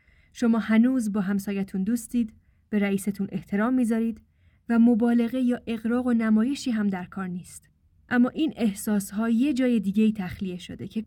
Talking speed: 150 wpm